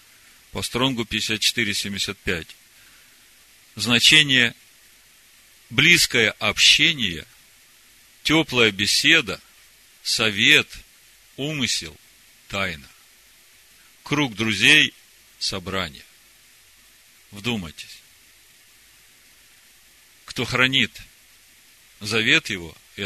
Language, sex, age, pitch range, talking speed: Russian, male, 40-59, 105-145 Hz, 50 wpm